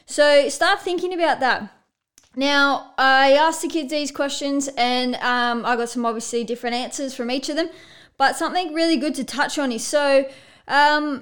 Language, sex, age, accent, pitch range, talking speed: English, female, 20-39, Australian, 230-280 Hz, 180 wpm